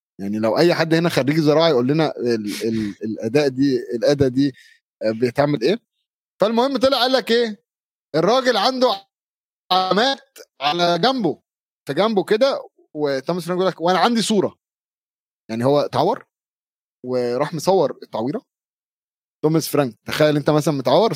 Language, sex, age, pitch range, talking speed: Arabic, male, 30-49, 140-190 Hz, 140 wpm